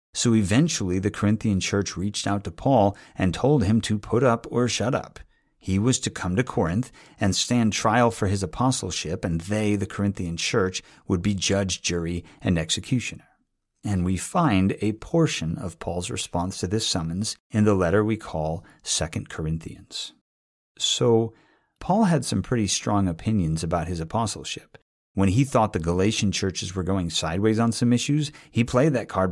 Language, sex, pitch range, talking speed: English, male, 90-115 Hz, 175 wpm